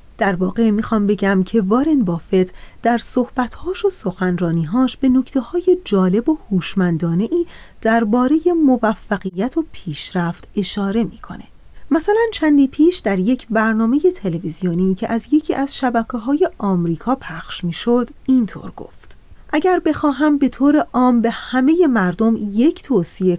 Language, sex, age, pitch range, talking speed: Persian, female, 30-49, 185-265 Hz, 135 wpm